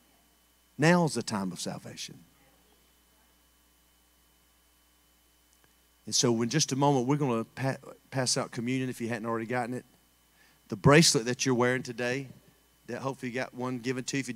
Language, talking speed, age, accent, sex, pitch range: English, 165 wpm, 40-59, American, male, 110-135 Hz